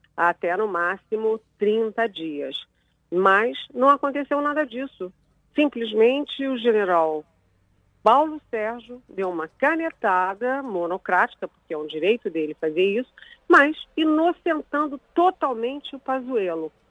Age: 50-69